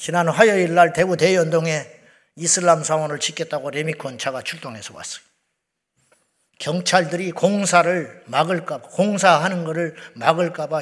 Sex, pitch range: male, 155-185 Hz